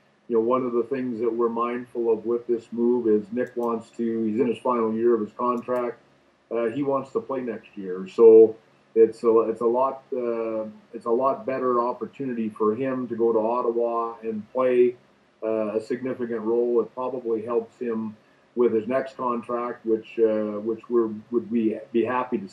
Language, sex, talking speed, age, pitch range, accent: English, male, 195 wpm, 40-59, 110-125 Hz, American